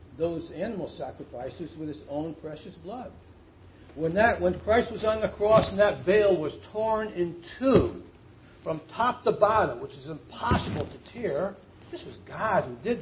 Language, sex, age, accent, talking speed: English, male, 60-79, American, 170 wpm